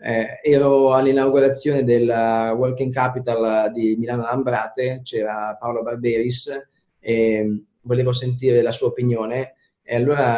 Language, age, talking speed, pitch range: Italian, 20-39, 115 wpm, 115-135 Hz